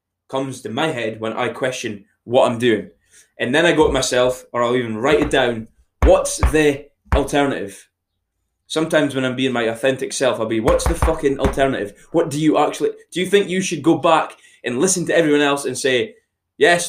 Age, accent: 20-39, British